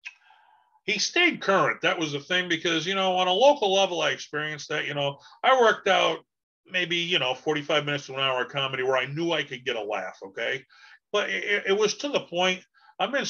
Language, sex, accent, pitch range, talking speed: English, male, American, 150-200 Hz, 225 wpm